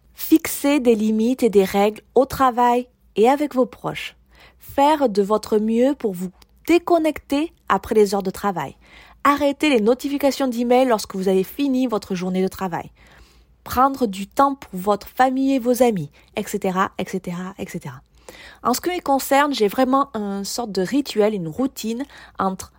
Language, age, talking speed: French, 20-39, 165 wpm